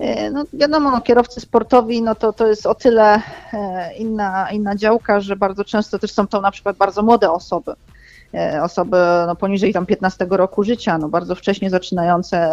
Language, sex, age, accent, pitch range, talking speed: Polish, female, 40-59, native, 195-230 Hz, 170 wpm